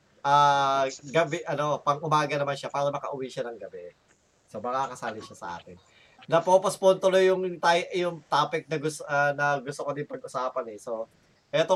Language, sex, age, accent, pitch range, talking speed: Filipino, male, 20-39, native, 140-180 Hz, 180 wpm